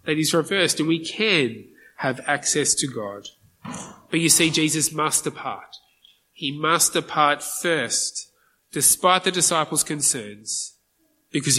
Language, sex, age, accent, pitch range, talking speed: English, male, 20-39, Australian, 135-200 Hz, 130 wpm